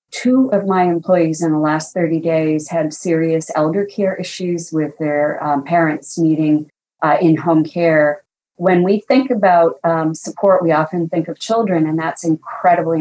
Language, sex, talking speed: English, female, 165 wpm